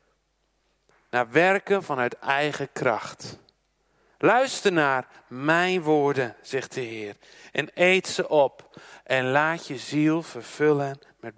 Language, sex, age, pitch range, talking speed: Dutch, male, 50-69, 130-200 Hz, 115 wpm